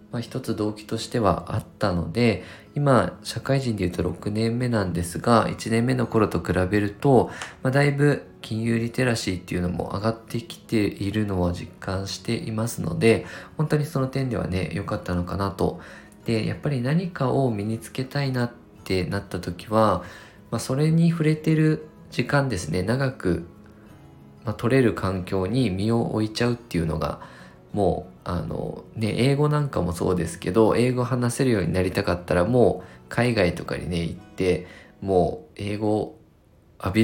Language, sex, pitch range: Japanese, male, 90-120 Hz